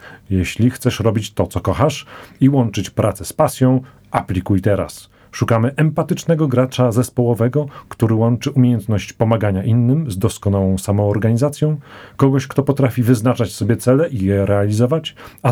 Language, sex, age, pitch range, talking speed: Polish, male, 40-59, 105-140 Hz, 135 wpm